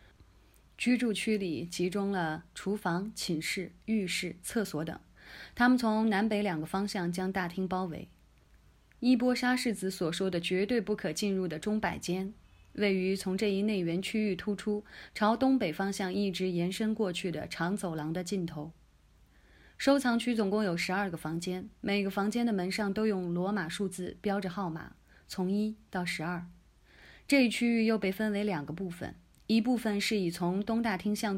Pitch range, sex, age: 175-215 Hz, female, 20-39